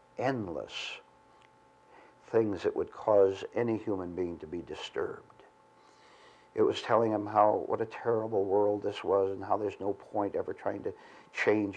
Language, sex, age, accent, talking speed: English, male, 60-79, American, 160 wpm